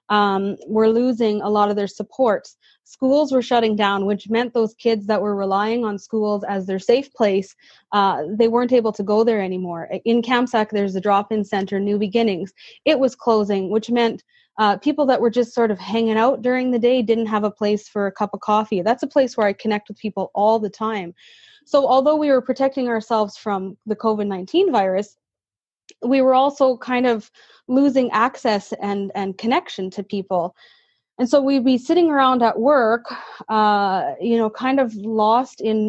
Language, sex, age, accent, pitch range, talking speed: English, female, 20-39, American, 205-245 Hz, 190 wpm